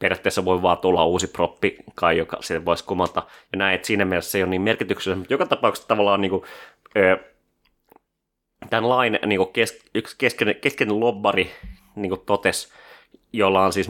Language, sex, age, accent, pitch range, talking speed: Finnish, male, 30-49, native, 90-110 Hz, 165 wpm